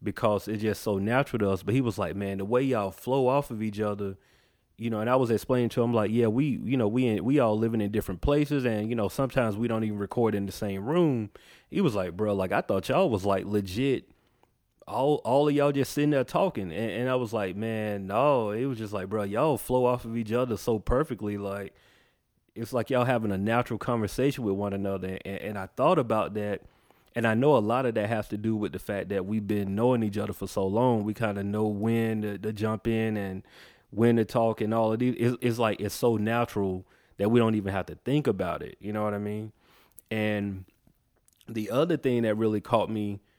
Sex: male